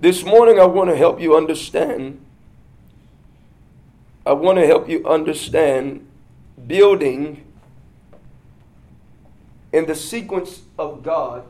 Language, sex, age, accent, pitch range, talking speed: English, male, 40-59, American, 150-190 Hz, 105 wpm